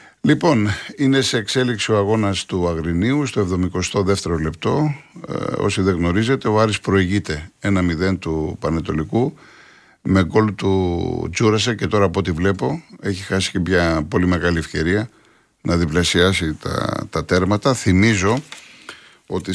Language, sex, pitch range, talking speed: Greek, male, 85-110 Hz, 135 wpm